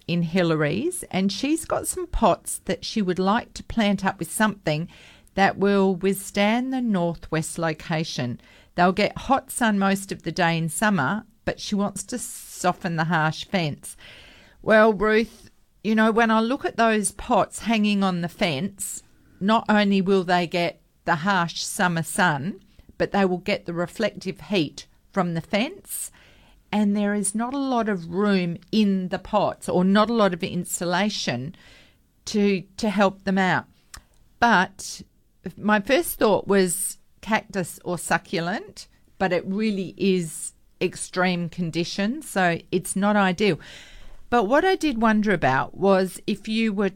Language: English